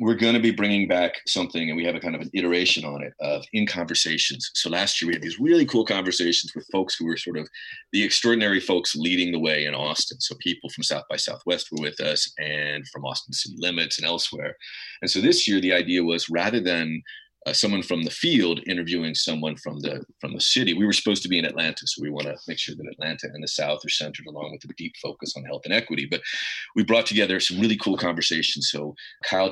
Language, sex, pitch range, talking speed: English, male, 75-90 Hz, 240 wpm